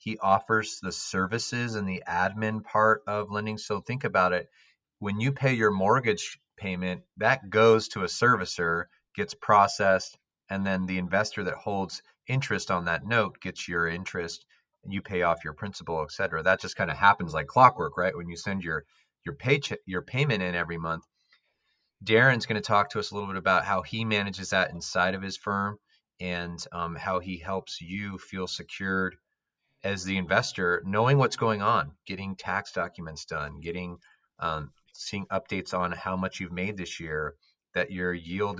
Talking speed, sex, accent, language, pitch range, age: 185 wpm, male, American, English, 90-110 Hz, 30-49